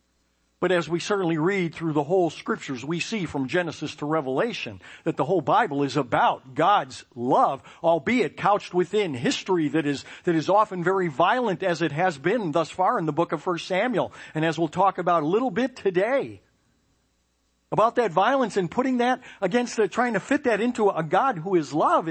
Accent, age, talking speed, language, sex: American, 50-69, 200 wpm, English, male